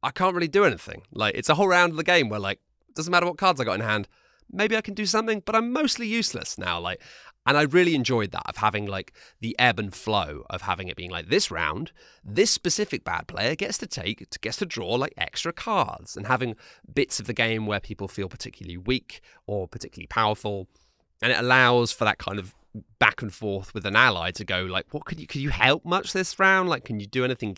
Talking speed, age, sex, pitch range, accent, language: 240 wpm, 30-49, male, 95-130 Hz, British, English